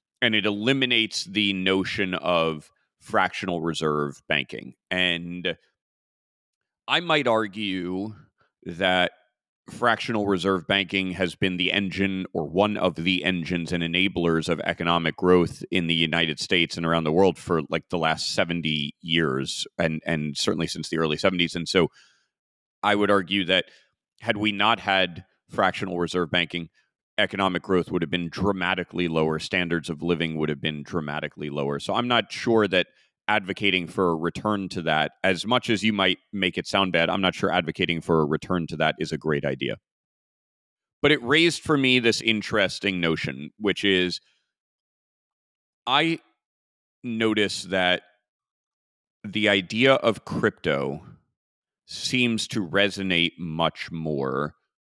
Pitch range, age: 85-100 Hz, 30-49